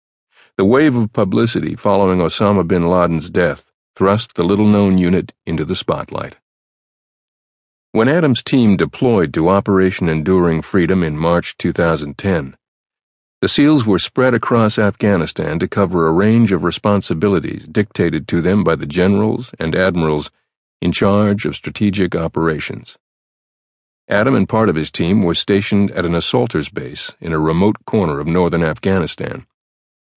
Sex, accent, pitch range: male, American, 85-105 Hz